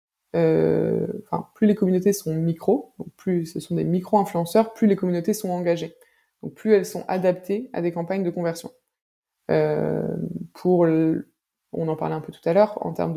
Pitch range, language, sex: 165-210 Hz, French, female